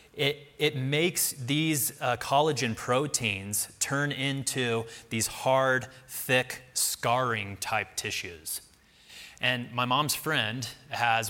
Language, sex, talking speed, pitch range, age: English, male, 100 wpm, 105-130 Hz, 30-49